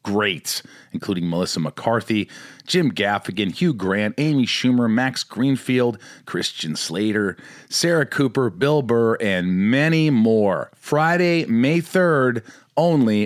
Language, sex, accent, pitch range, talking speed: English, male, American, 105-130 Hz, 115 wpm